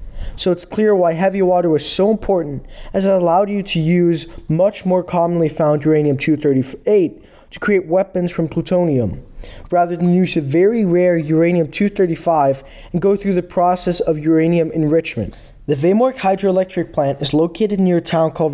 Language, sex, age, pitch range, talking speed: English, male, 20-39, 160-190 Hz, 160 wpm